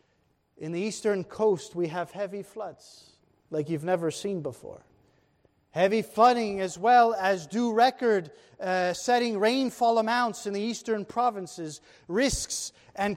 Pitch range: 180-230 Hz